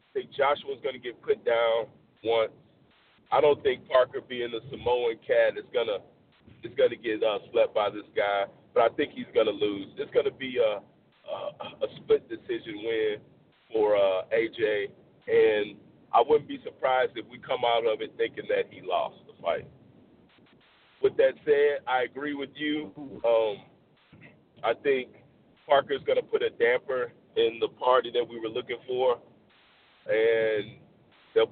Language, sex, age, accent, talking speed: English, male, 40-59, American, 165 wpm